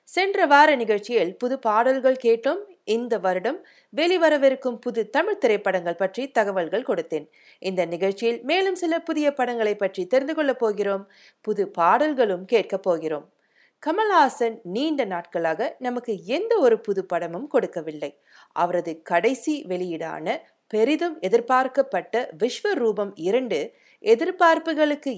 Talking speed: 110 wpm